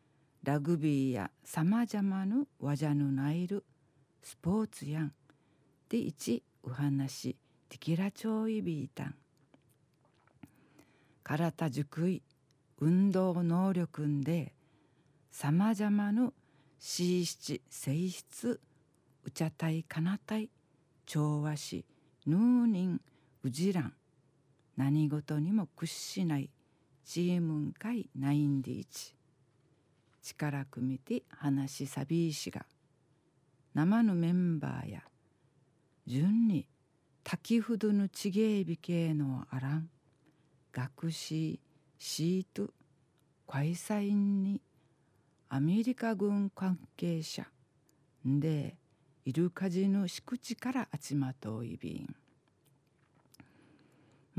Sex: female